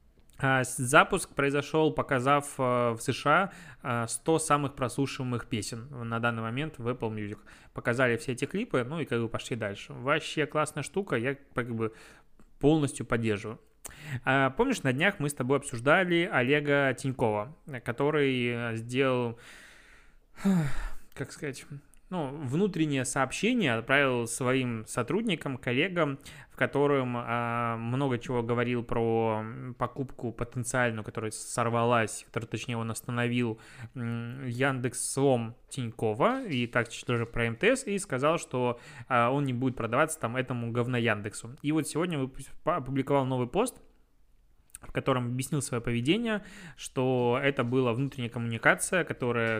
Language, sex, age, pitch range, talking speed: Russian, male, 20-39, 115-145 Hz, 130 wpm